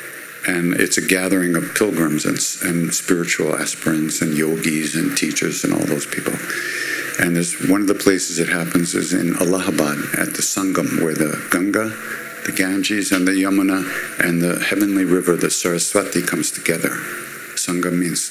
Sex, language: male, English